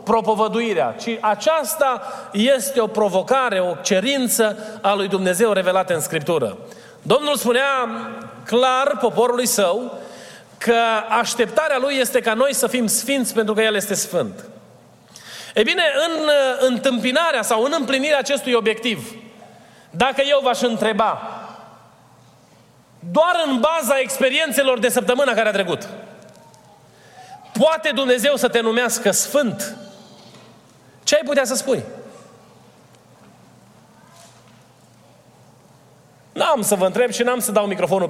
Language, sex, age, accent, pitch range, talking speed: Romanian, male, 30-49, native, 225-280 Hz, 120 wpm